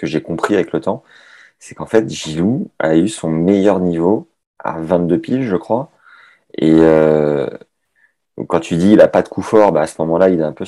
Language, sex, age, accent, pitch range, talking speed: French, male, 30-49, French, 80-100 Hz, 220 wpm